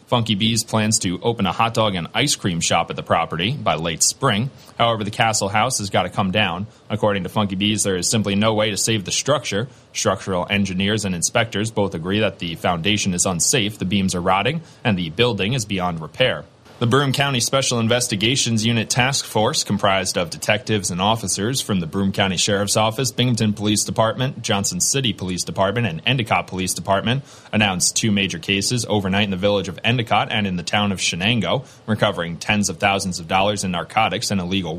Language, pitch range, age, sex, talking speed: English, 95-115 Hz, 30-49, male, 200 wpm